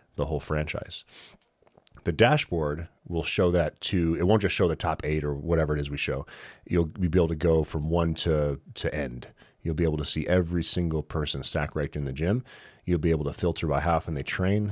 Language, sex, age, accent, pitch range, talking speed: English, male, 30-49, American, 75-90 Hz, 230 wpm